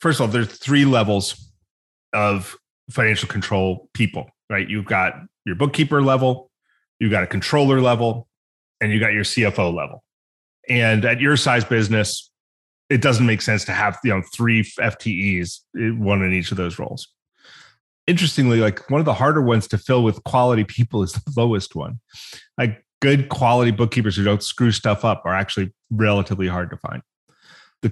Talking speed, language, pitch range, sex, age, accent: 170 wpm, English, 100-130 Hz, male, 30-49, American